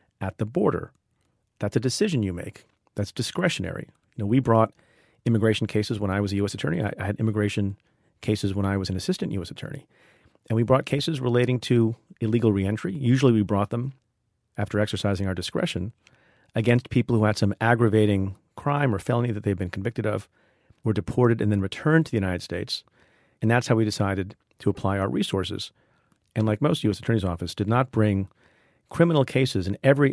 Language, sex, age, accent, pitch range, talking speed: English, male, 40-59, American, 100-125 Hz, 190 wpm